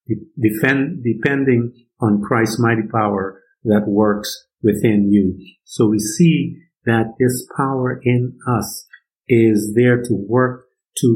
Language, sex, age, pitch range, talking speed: English, male, 50-69, 100-115 Hz, 120 wpm